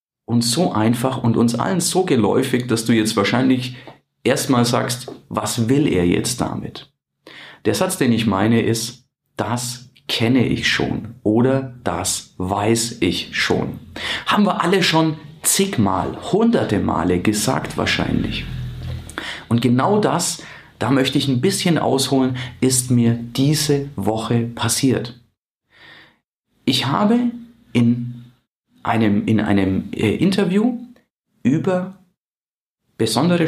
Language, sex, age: German, male, 40-59